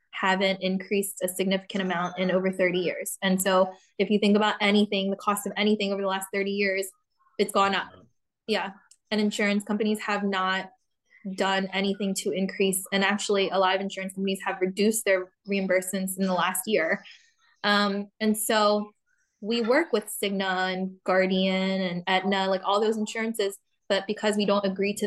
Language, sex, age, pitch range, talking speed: English, female, 20-39, 195-215 Hz, 175 wpm